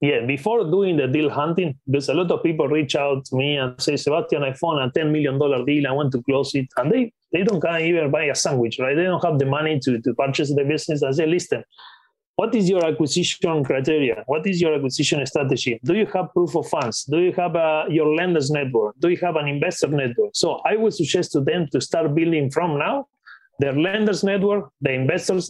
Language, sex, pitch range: English, male, 145-180 Hz